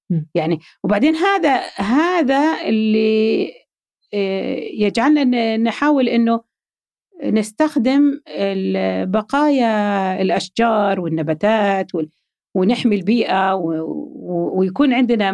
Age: 50-69